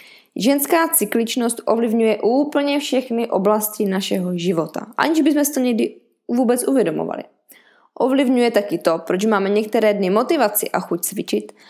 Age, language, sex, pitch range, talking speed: 20-39, Czech, female, 200-265 Hz, 135 wpm